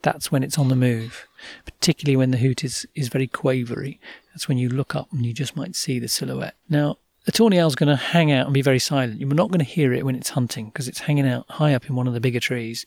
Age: 40-59